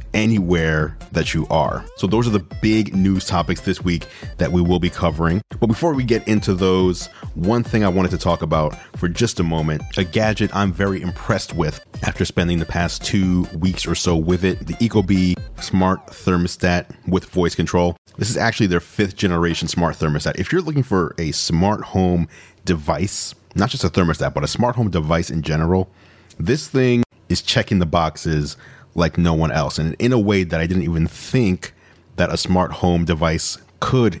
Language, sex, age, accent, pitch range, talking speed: English, male, 30-49, American, 85-105 Hz, 195 wpm